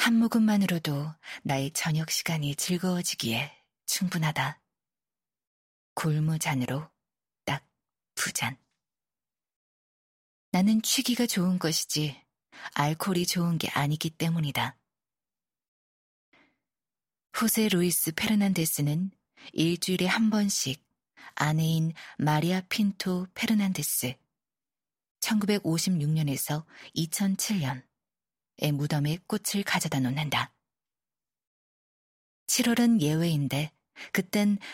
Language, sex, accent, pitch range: Korean, female, native, 145-190 Hz